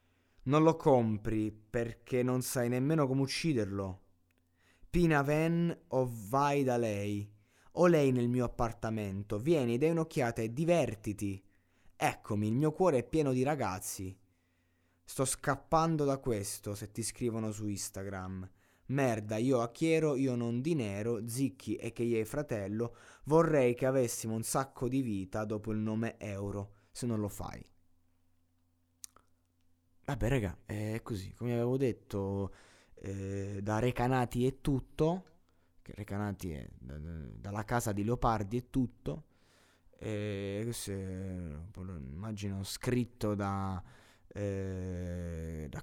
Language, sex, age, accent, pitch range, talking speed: Italian, male, 20-39, native, 95-130 Hz, 135 wpm